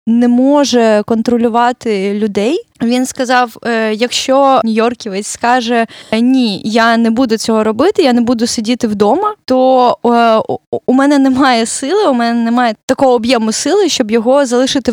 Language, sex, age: Ukrainian, female, 20-39